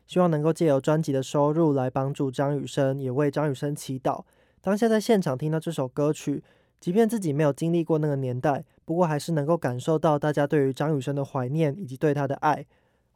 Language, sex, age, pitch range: Chinese, male, 20-39, 140-170 Hz